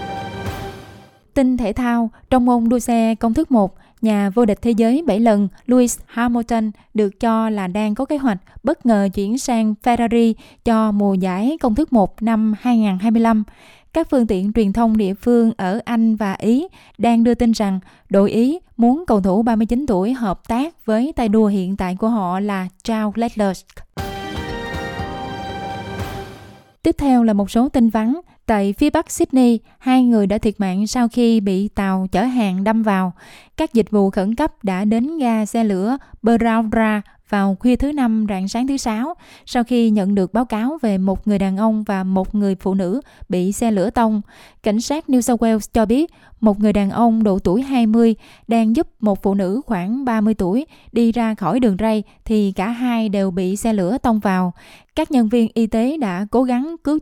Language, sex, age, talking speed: Vietnamese, female, 20-39, 190 wpm